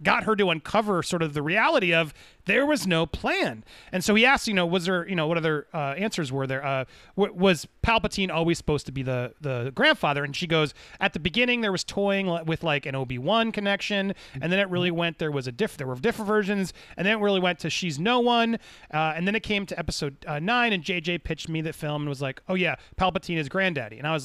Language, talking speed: English, 250 wpm